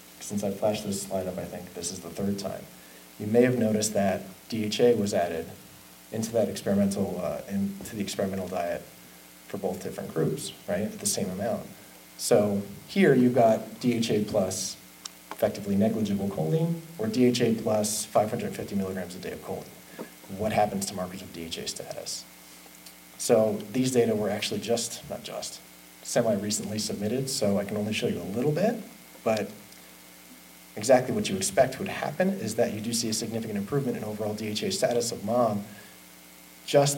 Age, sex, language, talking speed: 30-49, male, English, 170 wpm